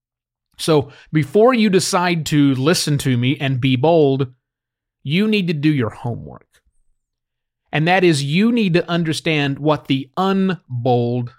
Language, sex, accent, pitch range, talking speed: English, male, American, 125-175 Hz, 140 wpm